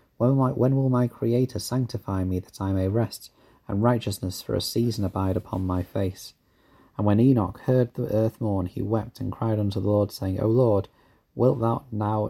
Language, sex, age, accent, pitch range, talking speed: English, male, 30-49, British, 95-120 Hz, 195 wpm